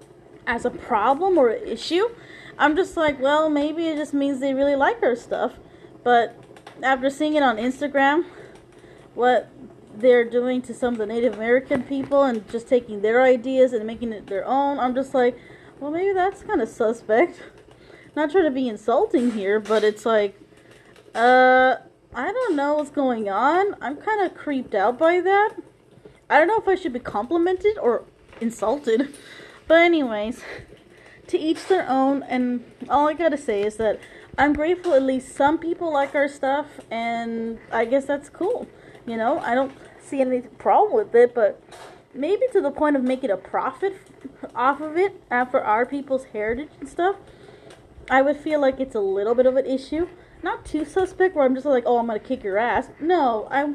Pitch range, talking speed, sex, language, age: 245-325 Hz, 185 wpm, female, English, 20-39